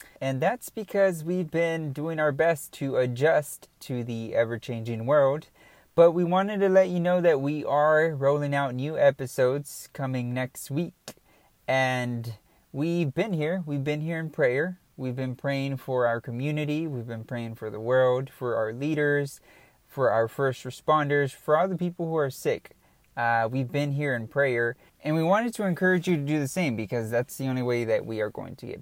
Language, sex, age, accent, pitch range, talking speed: English, male, 20-39, American, 120-155 Hz, 195 wpm